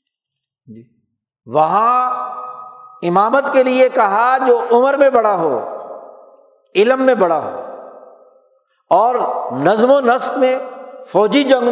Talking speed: 110 wpm